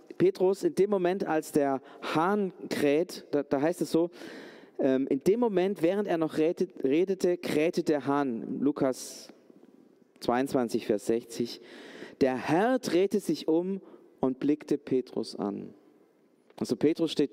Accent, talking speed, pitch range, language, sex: German, 140 wpm, 130-175 Hz, German, male